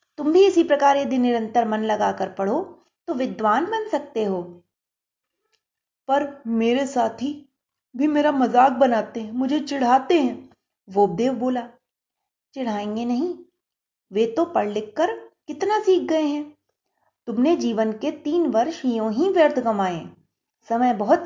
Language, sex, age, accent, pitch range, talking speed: Hindi, female, 30-49, native, 220-325 Hz, 140 wpm